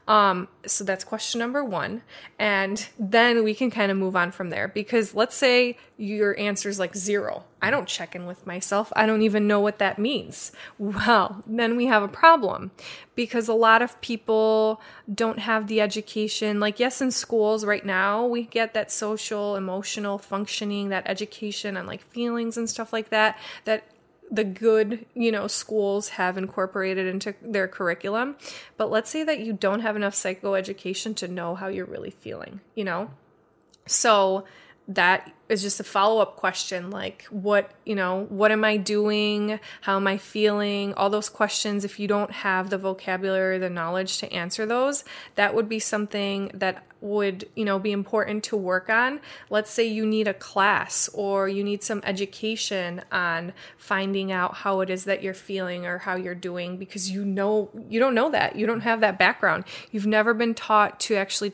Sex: female